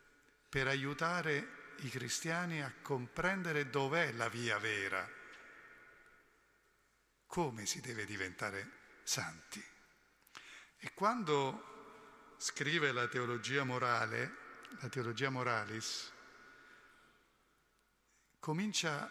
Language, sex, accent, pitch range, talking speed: Italian, male, native, 120-155 Hz, 80 wpm